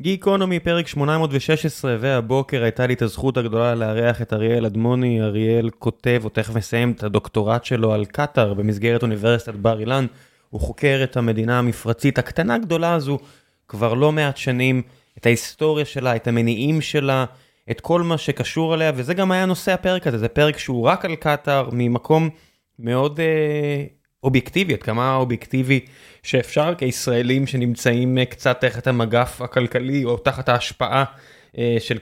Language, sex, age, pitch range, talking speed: Hebrew, male, 20-39, 115-150 Hz, 150 wpm